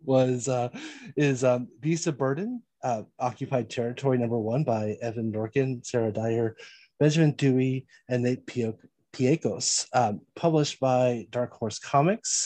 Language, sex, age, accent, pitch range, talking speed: English, male, 30-49, American, 120-145 Hz, 135 wpm